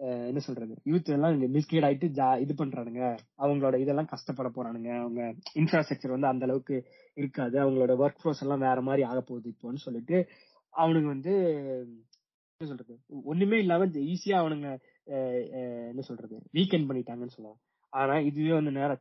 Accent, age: native, 20-39